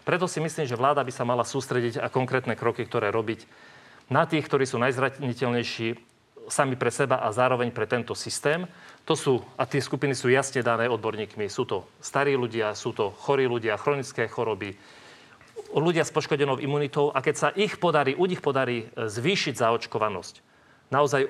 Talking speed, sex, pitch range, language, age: 170 wpm, male, 120-145 Hz, Slovak, 40-59